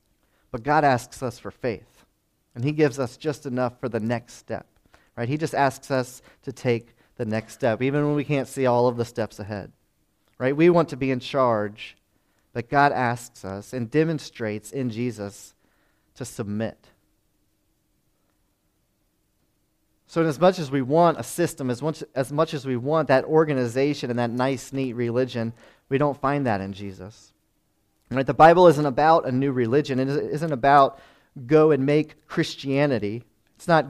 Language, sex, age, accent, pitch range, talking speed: English, male, 30-49, American, 115-145 Hz, 170 wpm